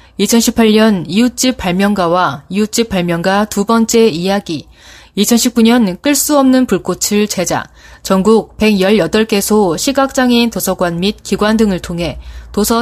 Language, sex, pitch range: Korean, female, 180-240 Hz